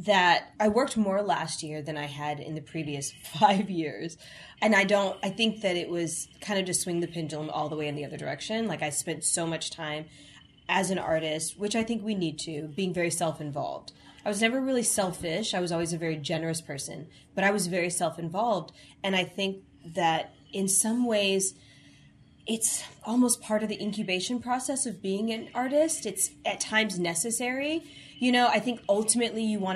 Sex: female